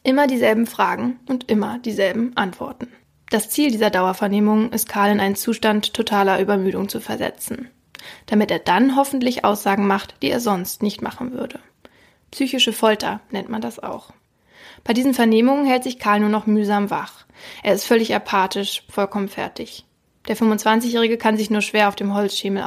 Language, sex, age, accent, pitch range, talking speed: German, female, 20-39, German, 200-230 Hz, 165 wpm